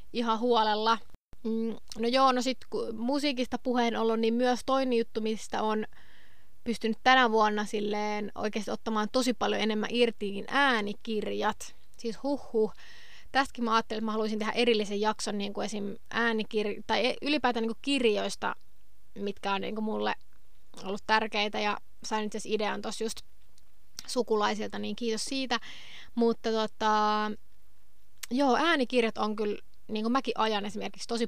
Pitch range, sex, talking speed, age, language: 210-235 Hz, female, 150 wpm, 20-39, Finnish